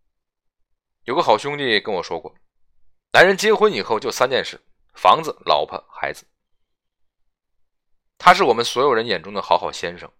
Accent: native